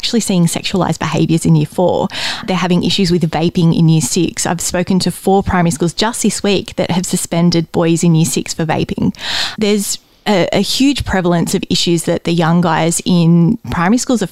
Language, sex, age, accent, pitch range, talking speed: English, female, 20-39, Australian, 170-195 Hz, 200 wpm